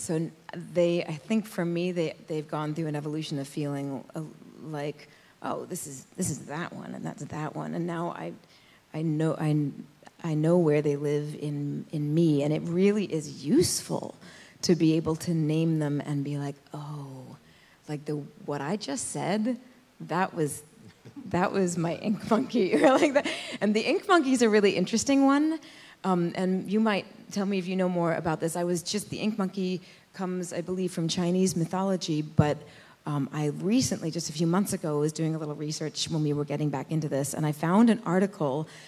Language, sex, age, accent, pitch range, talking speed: English, female, 30-49, American, 150-185 Hz, 195 wpm